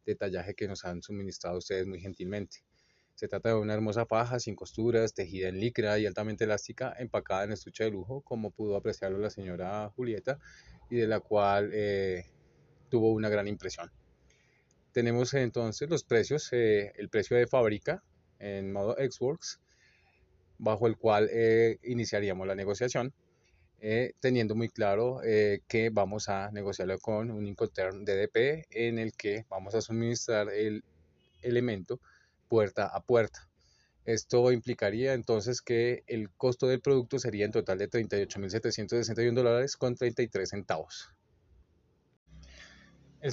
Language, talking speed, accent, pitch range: Spanish, 145 wpm, Colombian, 100-120 Hz